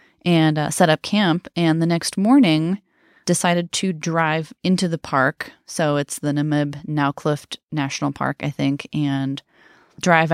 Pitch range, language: 140-175 Hz, English